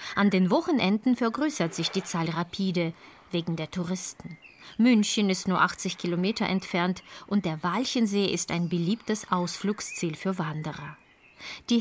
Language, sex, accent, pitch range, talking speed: German, female, German, 175-230 Hz, 135 wpm